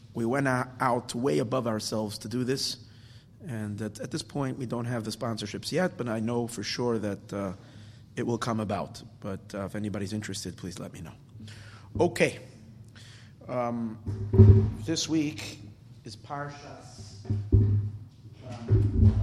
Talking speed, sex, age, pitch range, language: 145 wpm, male, 30-49, 110-130 Hz, English